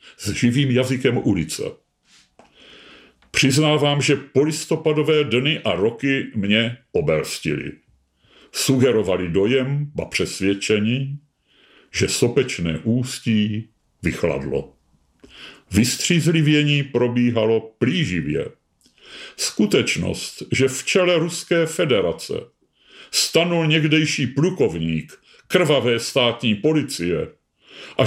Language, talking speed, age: Czech, 75 wpm, 50-69